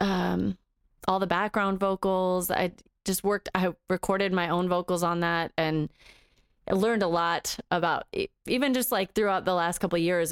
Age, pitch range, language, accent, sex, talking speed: 20-39, 170-205 Hz, English, American, female, 175 wpm